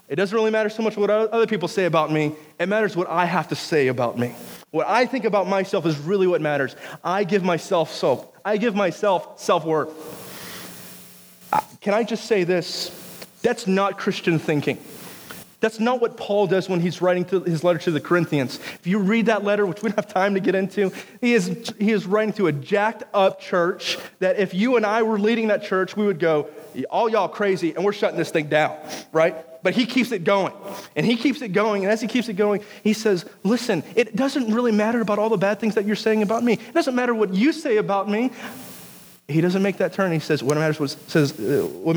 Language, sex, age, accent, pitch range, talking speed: English, male, 30-49, American, 165-215 Hz, 220 wpm